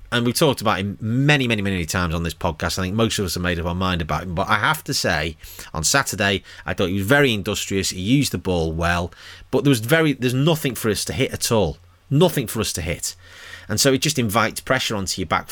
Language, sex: English, male